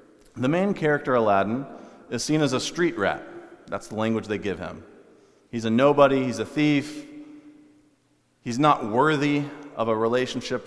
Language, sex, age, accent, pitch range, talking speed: English, male, 40-59, American, 120-160 Hz, 155 wpm